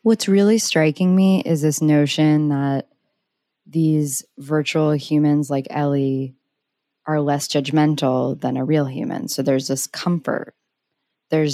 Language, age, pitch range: English, 20-39, 140-160 Hz